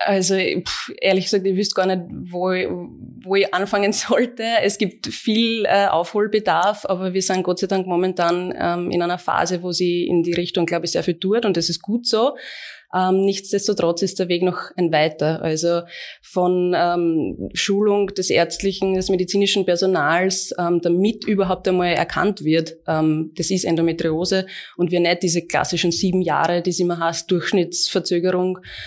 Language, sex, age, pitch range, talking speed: German, female, 20-39, 175-195 Hz, 175 wpm